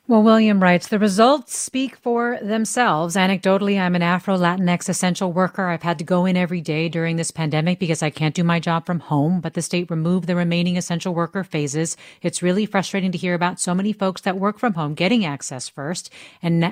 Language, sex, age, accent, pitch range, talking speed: English, female, 40-59, American, 155-195 Hz, 210 wpm